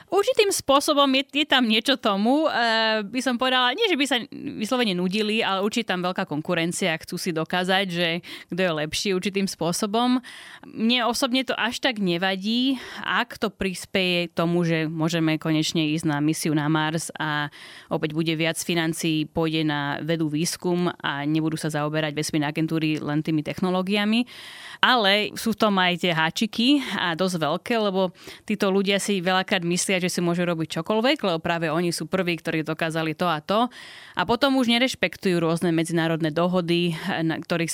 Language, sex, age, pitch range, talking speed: Slovak, female, 30-49, 165-200 Hz, 170 wpm